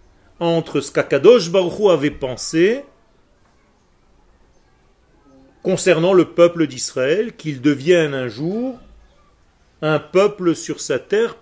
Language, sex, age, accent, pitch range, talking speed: French, male, 40-59, French, 145-190 Hz, 105 wpm